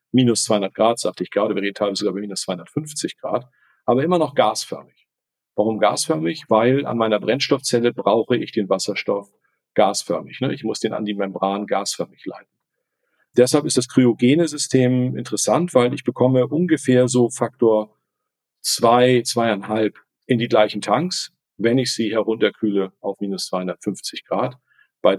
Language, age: German, 50-69